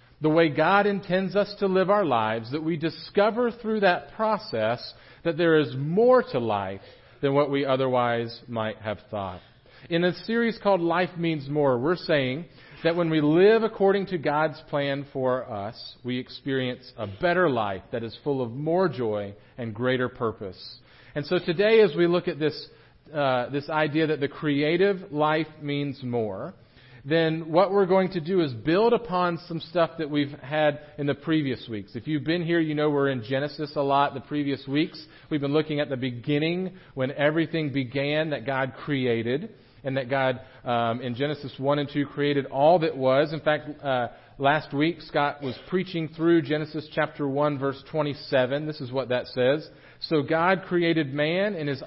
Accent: American